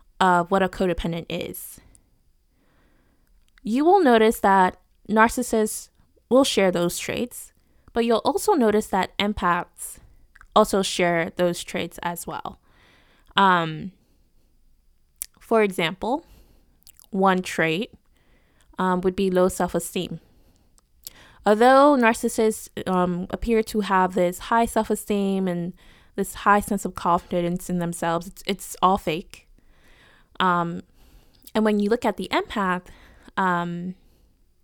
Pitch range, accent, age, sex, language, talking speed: 180-220 Hz, American, 20-39, female, English, 115 wpm